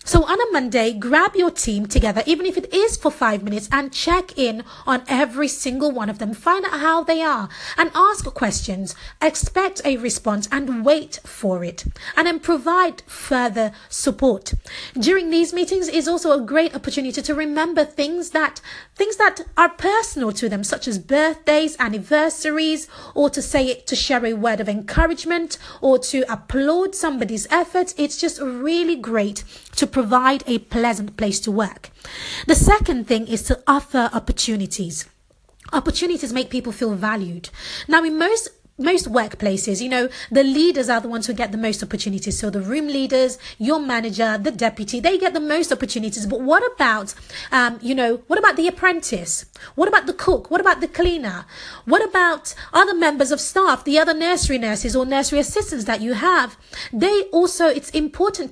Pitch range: 235-330 Hz